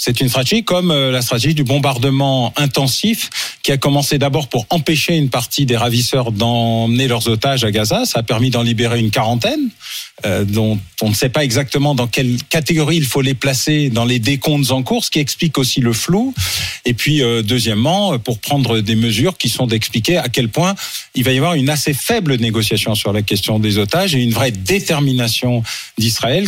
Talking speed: 195 wpm